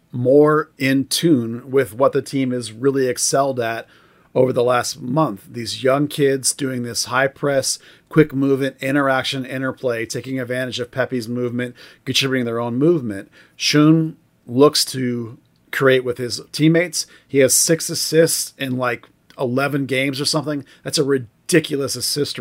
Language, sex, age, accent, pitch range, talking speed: English, male, 40-59, American, 125-145 Hz, 145 wpm